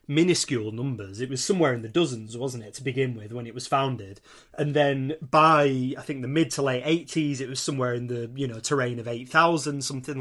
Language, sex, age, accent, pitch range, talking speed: English, male, 30-49, British, 125-155 Hz, 230 wpm